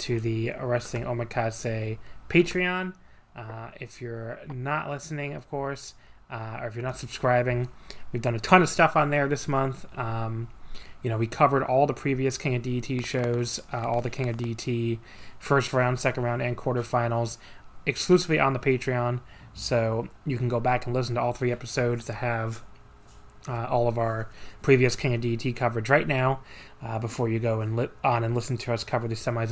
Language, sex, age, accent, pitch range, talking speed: English, male, 20-39, American, 115-130 Hz, 190 wpm